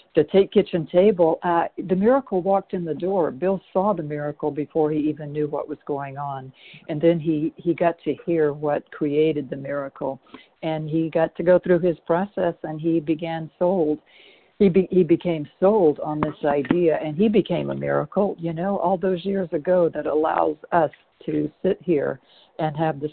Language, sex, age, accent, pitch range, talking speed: English, female, 60-79, American, 155-185 Hz, 190 wpm